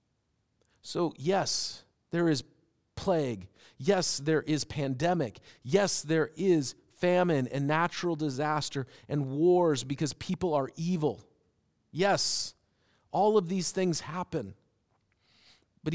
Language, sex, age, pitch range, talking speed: English, male, 40-59, 125-170 Hz, 110 wpm